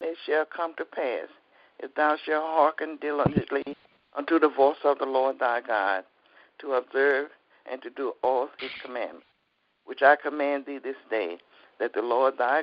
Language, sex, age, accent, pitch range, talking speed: English, male, 60-79, American, 130-160 Hz, 170 wpm